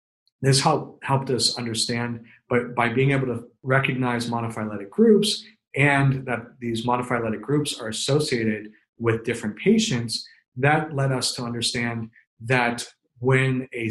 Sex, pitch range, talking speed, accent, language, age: male, 110-130 Hz, 135 wpm, American, English, 30-49